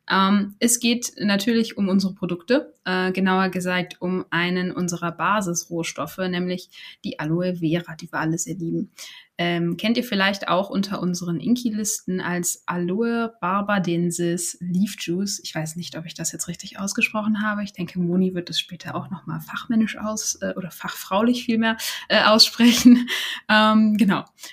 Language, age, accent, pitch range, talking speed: German, 20-39, German, 175-215 Hz, 155 wpm